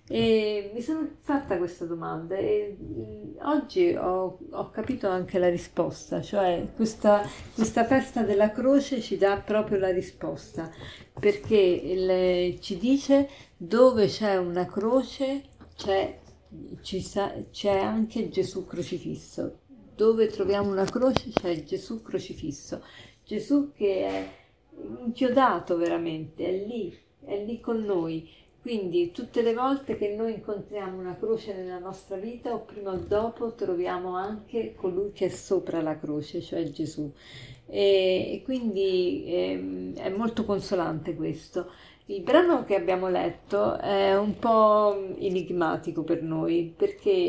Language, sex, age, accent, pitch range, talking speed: Italian, female, 50-69, native, 180-225 Hz, 130 wpm